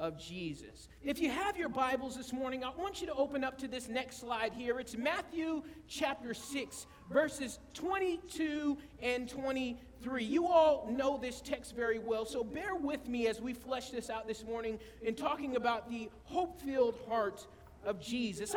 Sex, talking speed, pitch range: male, 170 wpm, 225-285 Hz